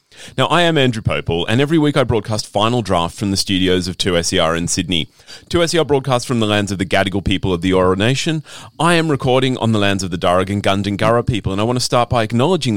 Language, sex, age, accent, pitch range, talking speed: English, male, 30-49, Australian, 95-130 Hz, 240 wpm